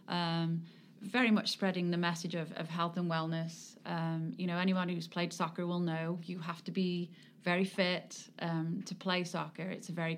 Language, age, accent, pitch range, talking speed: English, 30-49, British, 165-190 Hz, 195 wpm